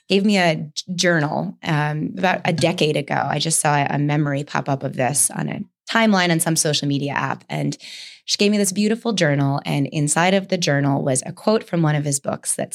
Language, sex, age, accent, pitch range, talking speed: English, female, 20-39, American, 155-195 Hz, 220 wpm